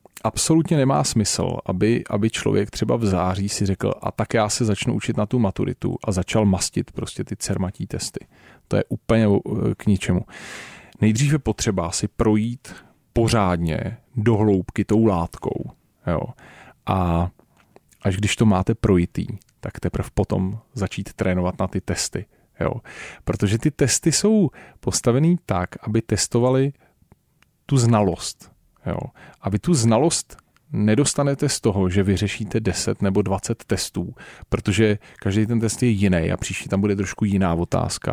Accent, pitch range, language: native, 100-115 Hz, Czech